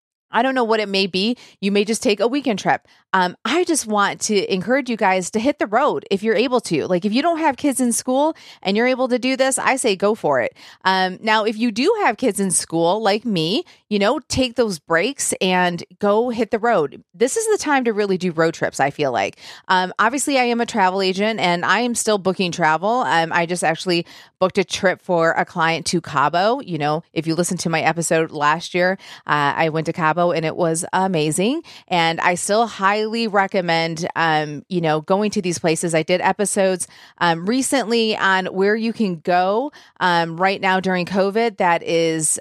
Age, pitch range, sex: 30-49, 175-235 Hz, female